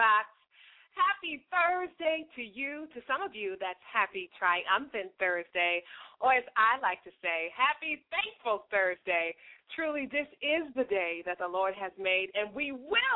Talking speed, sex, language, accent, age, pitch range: 155 wpm, female, English, American, 30-49, 195-280 Hz